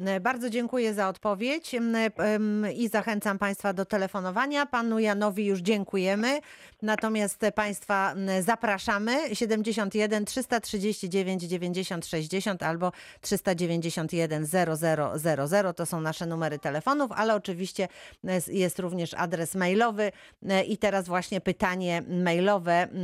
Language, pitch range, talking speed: Polish, 165-205 Hz, 100 wpm